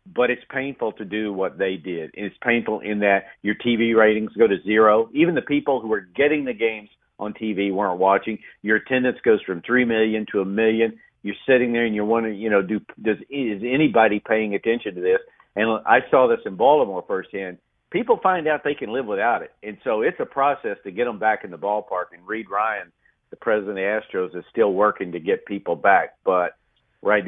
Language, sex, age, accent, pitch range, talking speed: English, male, 50-69, American, 100-125 Hz, 220 wpm